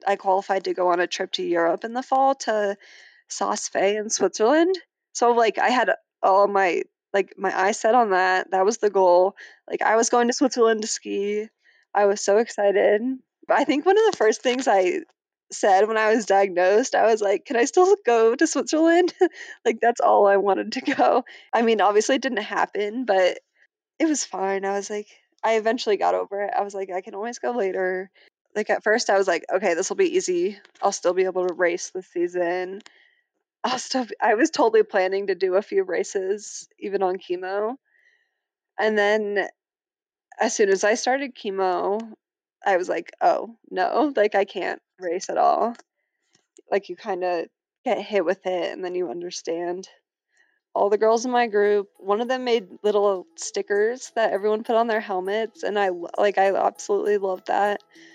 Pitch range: 190-255 Hz